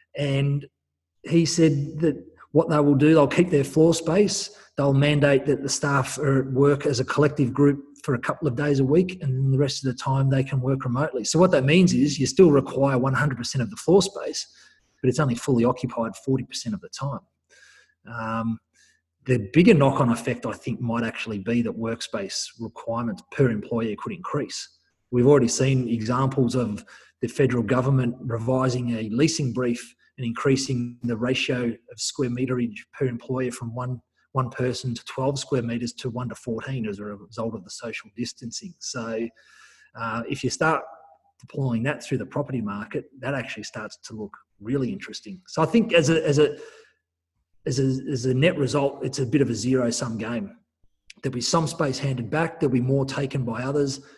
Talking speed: 190 wpm